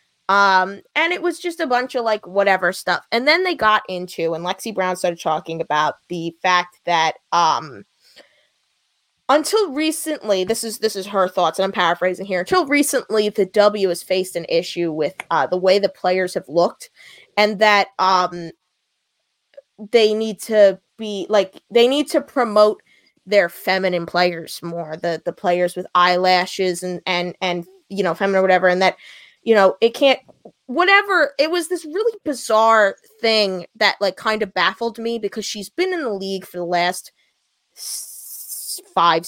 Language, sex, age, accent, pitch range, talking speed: English, female, 20-39, American, 180-245 Hz, 170 wpm